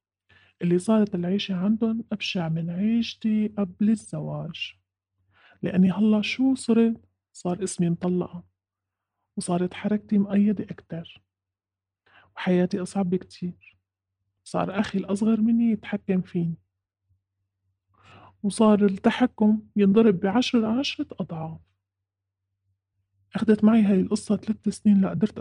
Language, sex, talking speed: Arabic, male, 100 wpm